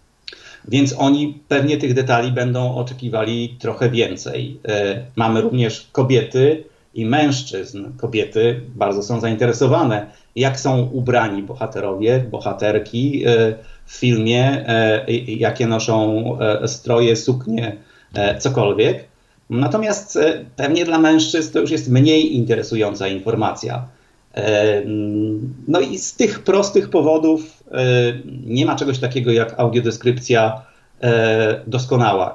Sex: male